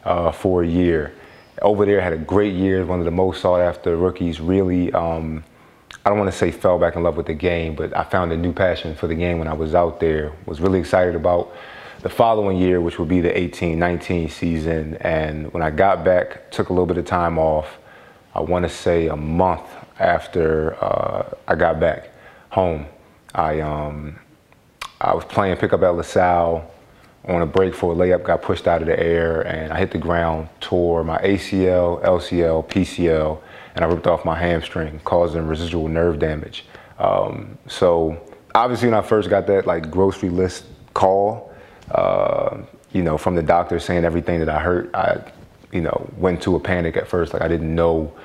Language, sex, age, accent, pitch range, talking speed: English, male, 30-49, American, 80-90 Hz, 200 wpm